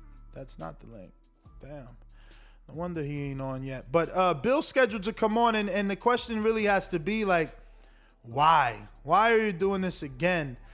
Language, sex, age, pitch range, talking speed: English, male, 20-39, 155-210 Hz, 190 wpm